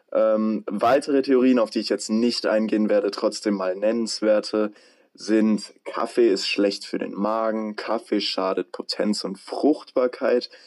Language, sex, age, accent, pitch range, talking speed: German, male, 20-39, German, 105-120 Hz, 140 wpm